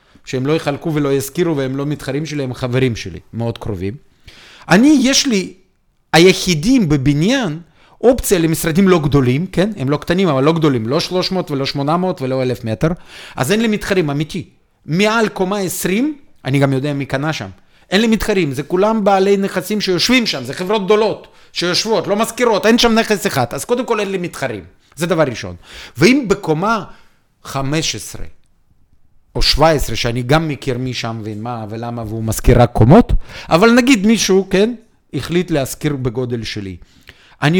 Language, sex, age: Hebrew, male, 40-59